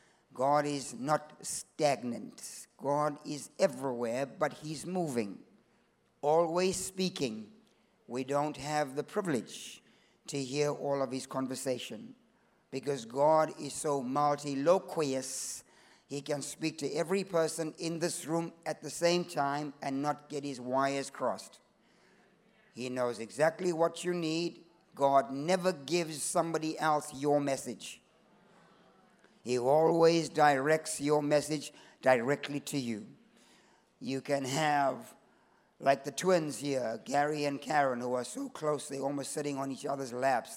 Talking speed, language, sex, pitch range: 130 wpm, English, male, 135-160 Hz